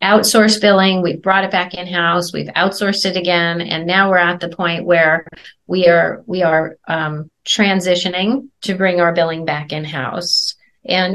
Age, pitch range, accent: 30-49, 160-185 Hz, American